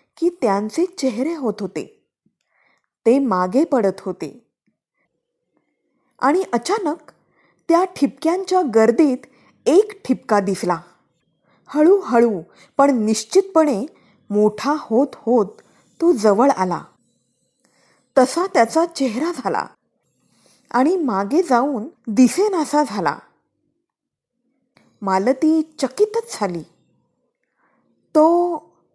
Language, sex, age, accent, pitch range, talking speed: Marathi, female, 20-39, native, 220-330 Hz, 85 wpm